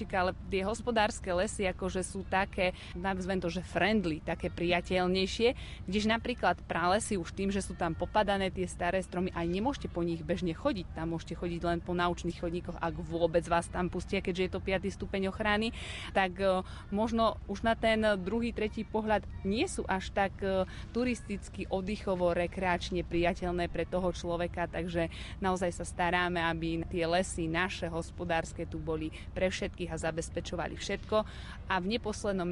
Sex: female